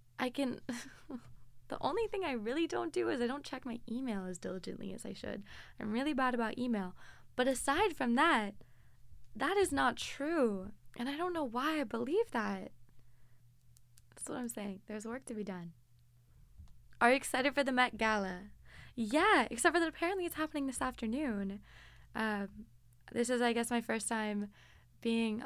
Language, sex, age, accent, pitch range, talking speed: English, female, 20-39, American, 195-245 Hz, 175 wpm